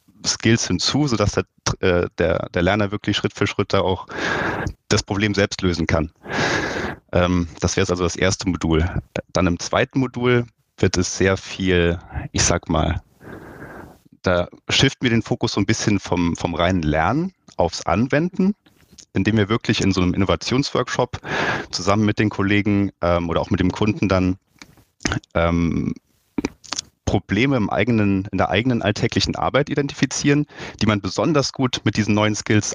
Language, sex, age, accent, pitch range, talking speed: German, male, 30-49, German, 90-115 Hz, 150 wpm